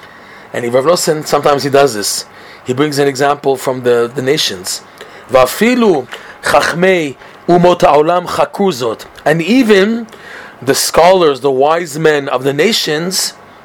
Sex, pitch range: male, 125-155 Hz